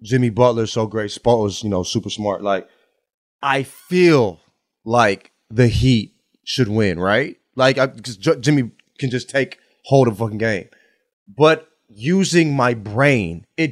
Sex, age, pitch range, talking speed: male, 30-49, 110-165 Hz, 150 wpm